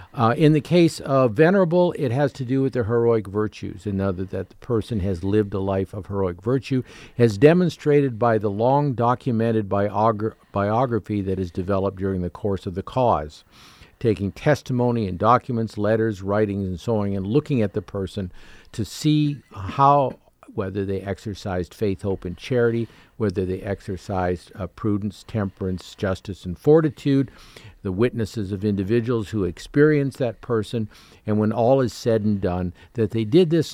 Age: 50-69